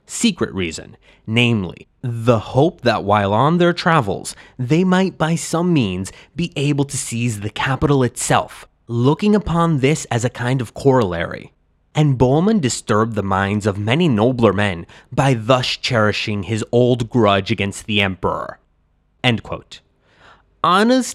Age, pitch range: 20-39, 105-150 Hz